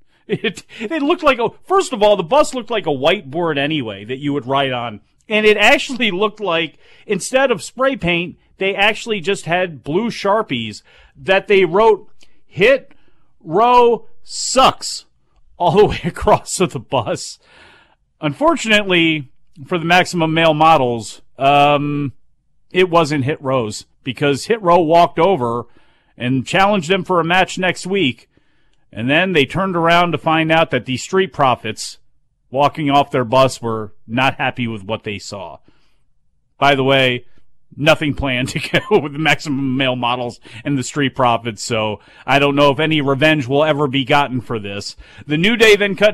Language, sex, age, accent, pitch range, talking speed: English, male, 40-59, American, 135-180 Hz, 170 wpm